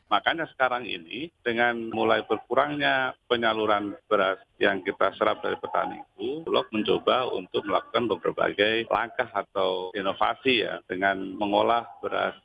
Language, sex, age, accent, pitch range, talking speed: Indonesian, male, 40-59, native, 115-150 Hz, 125 wpm